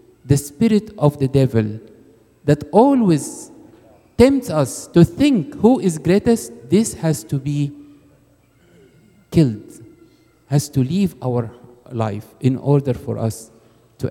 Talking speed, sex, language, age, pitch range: 125 wpm, male, English, 50-69, 125-175 Hz